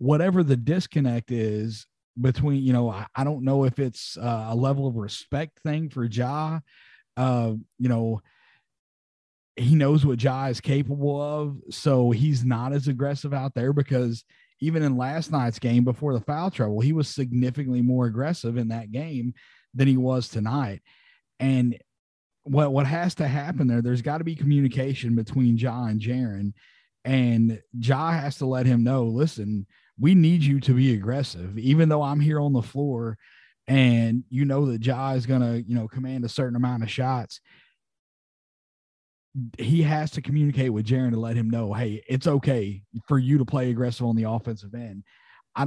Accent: American